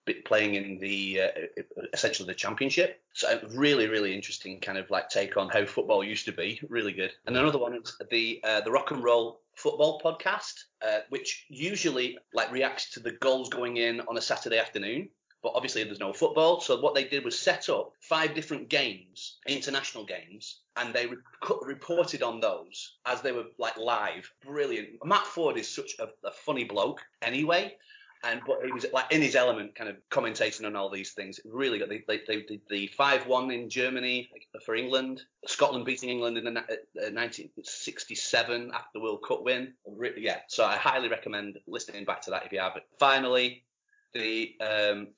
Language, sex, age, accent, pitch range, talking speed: English, male, 30-49, British, 105-155 Hz, 190 wpm